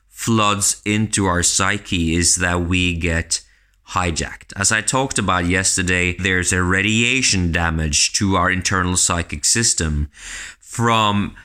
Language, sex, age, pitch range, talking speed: English, male, 20-39, 85-110 Hz, 125 wpm